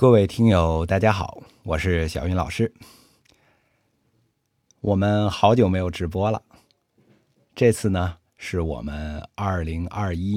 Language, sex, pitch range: Chinese, male, 85-110 Hz